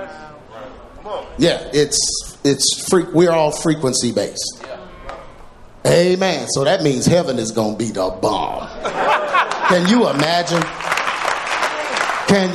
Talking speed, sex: 110 wpm, male